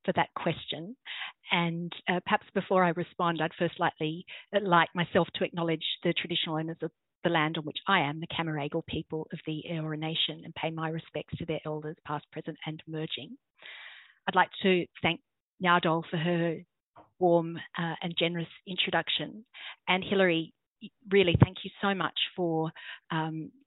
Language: English